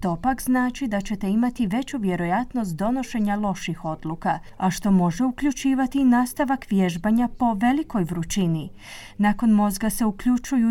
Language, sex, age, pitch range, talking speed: Croatian, female, 30-49, 185-250 Hz, 135 wpm